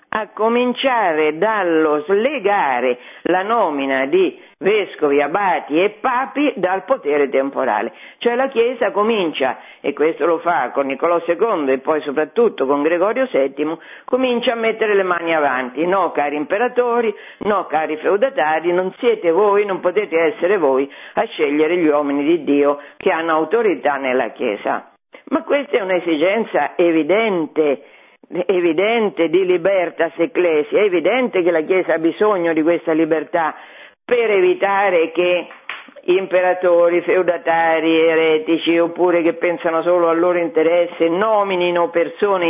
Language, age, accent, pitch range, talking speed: Italian, 50-69, native, 160-210 Hz, 135 wpm